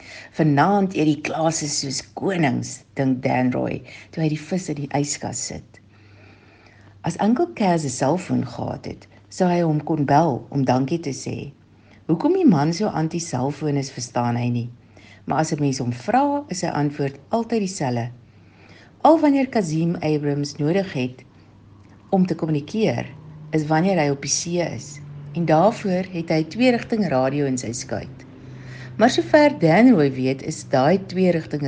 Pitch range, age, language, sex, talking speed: 125-160 Hz, 60-79, English, female, 170 wpm